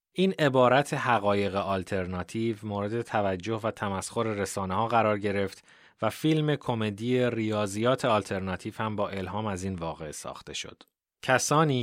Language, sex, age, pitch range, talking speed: Persian, male, 30-49, 95-115 Hz, 130 wpm